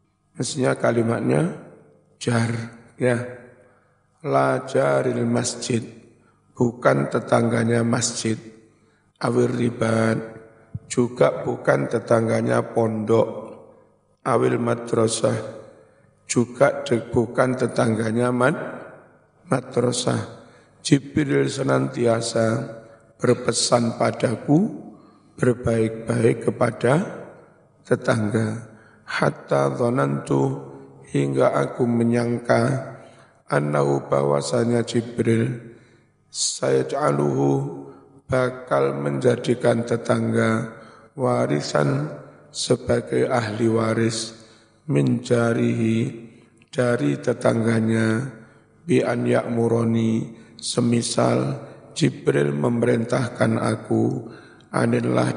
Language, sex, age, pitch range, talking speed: Indonesian, male, 50-69, 110-120 Hz, 60 wpm